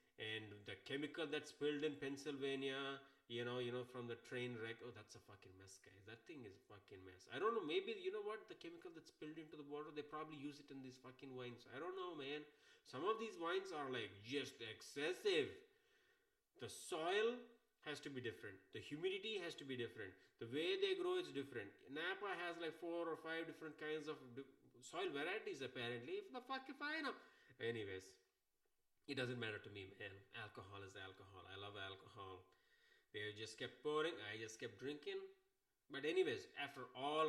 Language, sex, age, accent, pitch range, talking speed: English, male, 30-49, Indian, 115-175 Hz, 195 wpm